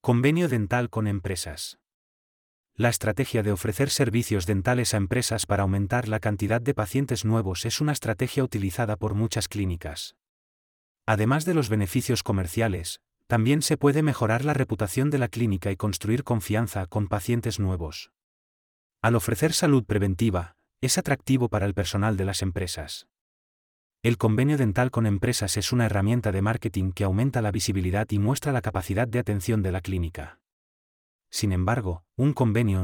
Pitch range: 95-120 Hz